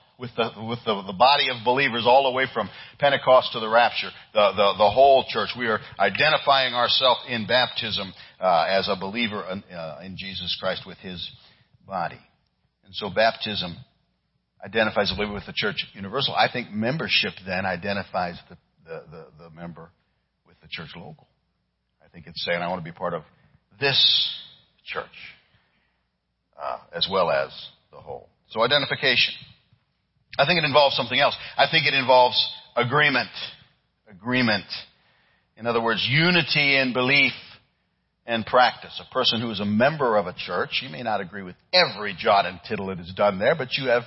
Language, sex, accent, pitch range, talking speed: English, male, American, 100-135 Hz, 175 wpm